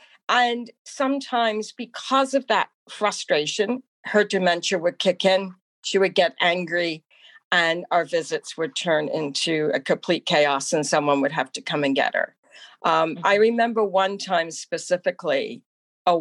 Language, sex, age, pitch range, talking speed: English, female, 50-69, 160-215 Hz, 150 wpm